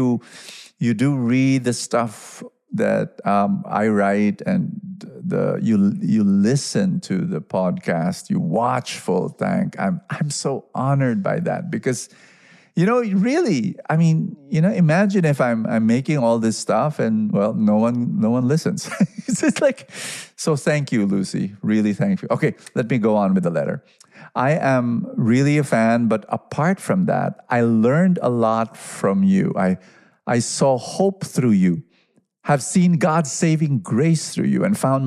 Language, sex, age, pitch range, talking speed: English, male, 50-69, 120-190 Hz, 170 wpm